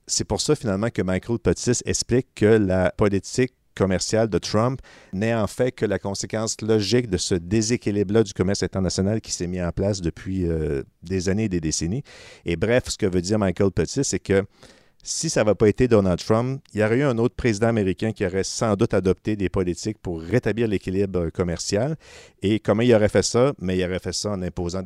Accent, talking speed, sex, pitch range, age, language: Canadian, 210 wpm, male, 90-110 Hz, 50-69, French